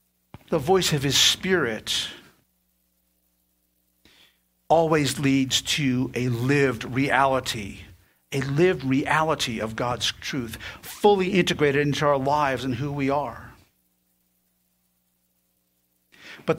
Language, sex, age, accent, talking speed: English, male, 50-69, American, 100 wpm